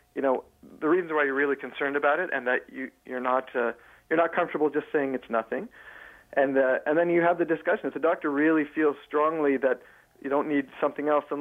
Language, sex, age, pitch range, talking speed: English, male, 40-59, 130-155 Hz, 225 wpm